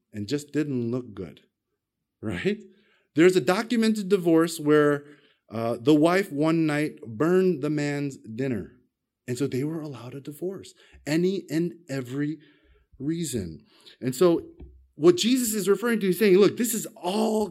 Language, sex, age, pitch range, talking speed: English, male, 30-49, 135-190 Hz, 150 wpm